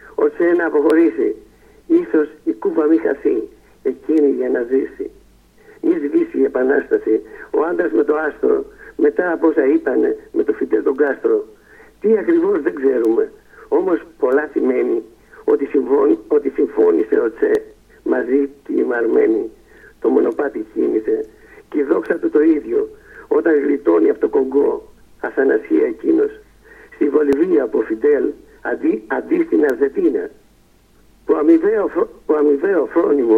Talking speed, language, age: 135 wpm, Greek, 60-79